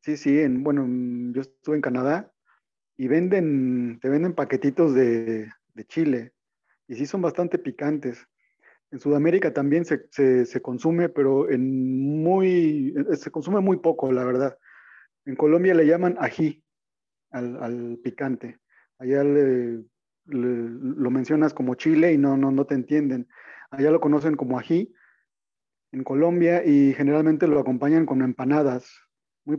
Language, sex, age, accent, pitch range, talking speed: Spanish, male, 40-59, Mexican, 130-160 Hz, 145 wpm